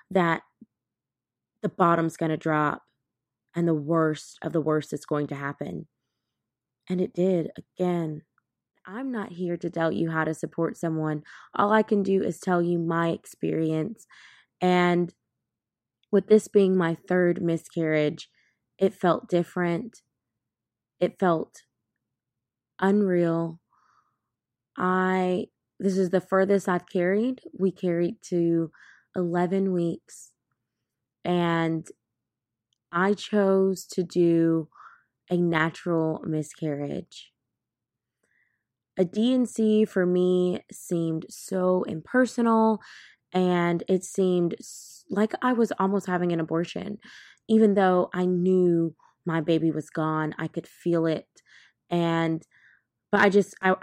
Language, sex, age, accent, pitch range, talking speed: English, female, 20-39, American, 160-190 Hz, 120 wpm